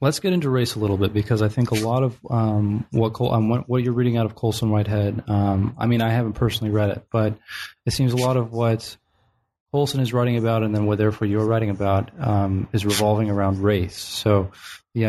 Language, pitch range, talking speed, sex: English, 100-115 Hz, 225 wpm, male